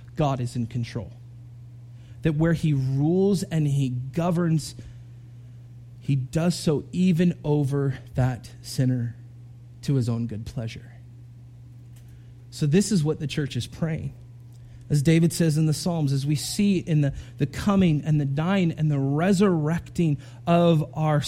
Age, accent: 30-49, American